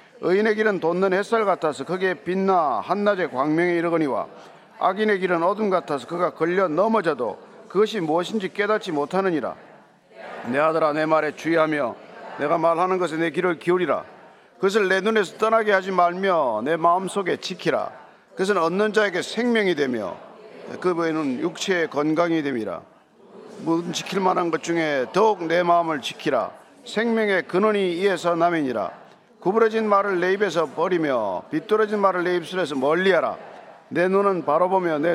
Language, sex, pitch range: Korean, male, 170-210 Hz